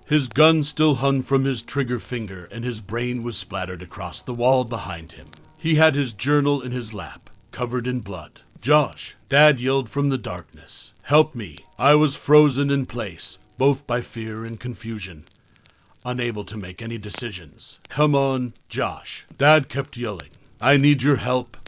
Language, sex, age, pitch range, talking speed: English, male, 60-79, 100-135 Hz, 170 wpm